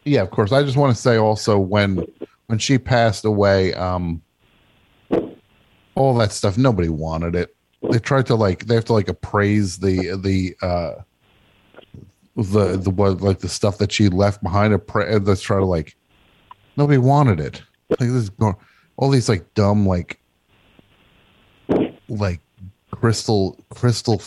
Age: 30-49